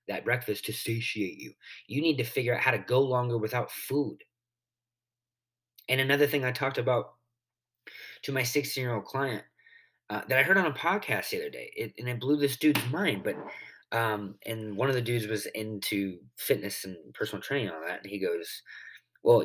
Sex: male